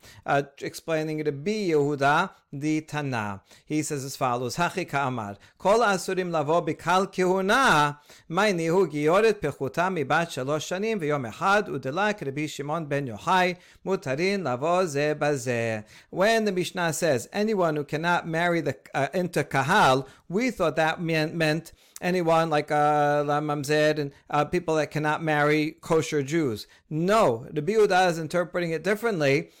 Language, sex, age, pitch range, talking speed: English, male, 40-59, 145-185 Hz, 140 wpm